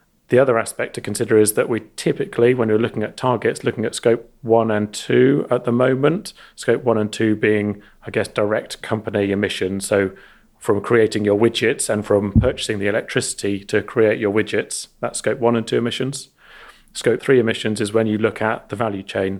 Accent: British